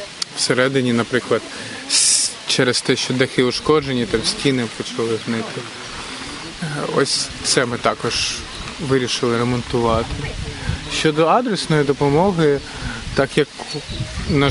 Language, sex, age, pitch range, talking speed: Ukrainian, male, 20-39, 125-145 Hz, 95 wpm